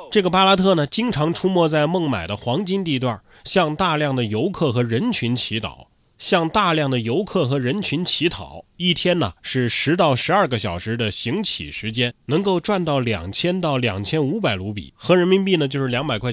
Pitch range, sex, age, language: 115-175 Hz, male, 20-39, Chinese